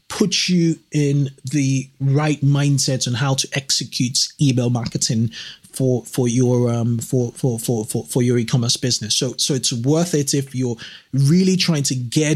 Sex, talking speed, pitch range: male, 170 wpm, 130-165 Hz